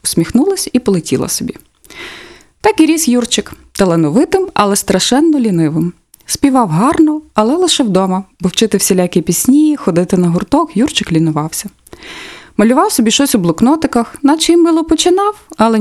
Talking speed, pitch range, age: 135 wpm, 180-265 Hz, 20-39